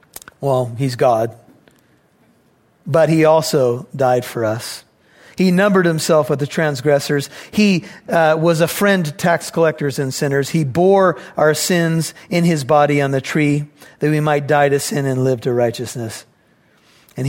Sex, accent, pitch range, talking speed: male, American, 140-170 Hz, 160 wpm